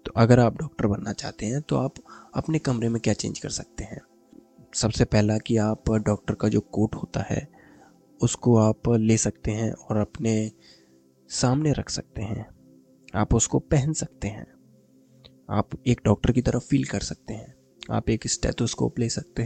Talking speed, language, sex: 175 wpm, Hindi, male